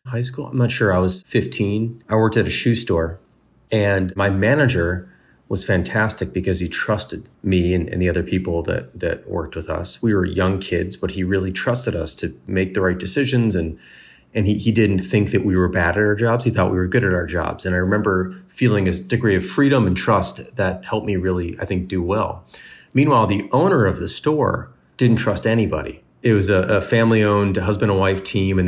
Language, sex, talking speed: English, male, 220 wpm